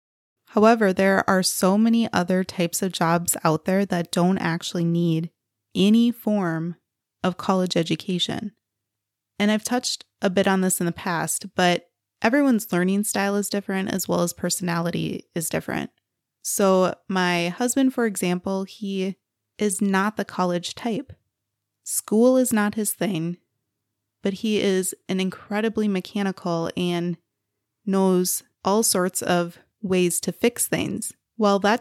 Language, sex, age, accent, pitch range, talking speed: English, female, 20-39, American, 170-210 Hz, 140 wpm